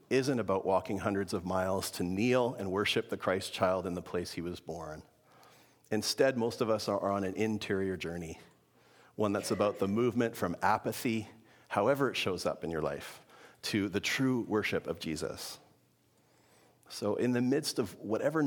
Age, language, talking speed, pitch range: 40-59, English, 175 wpm, 95-110 Hz